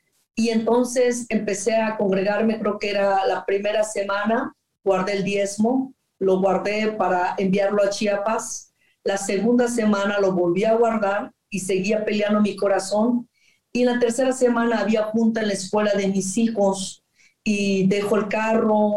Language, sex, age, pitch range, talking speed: Spanish, female, 40-59, 195-220 Hz, 150 wpm